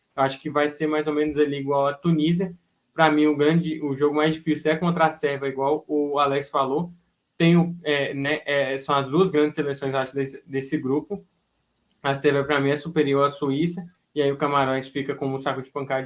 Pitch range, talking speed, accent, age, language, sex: 140-155 Hz, 220 wpm, Brazilian, 10-29, Portuguese, male